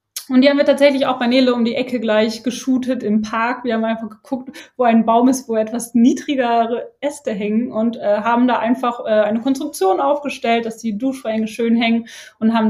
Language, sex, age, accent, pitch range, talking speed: German, female, 20-39, German, 205-245 Hz, 210 wpm